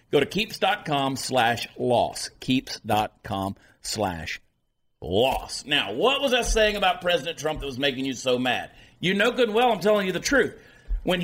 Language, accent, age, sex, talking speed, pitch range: English, American, 50-69, male, 175 wpm, 125-175 Hz